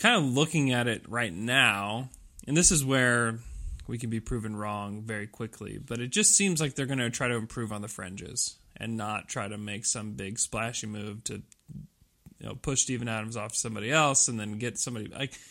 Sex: male